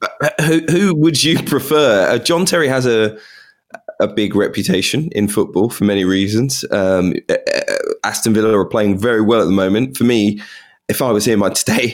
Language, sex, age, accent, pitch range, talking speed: English, male, 20-39, British, 100-125 Hz, 190 wpm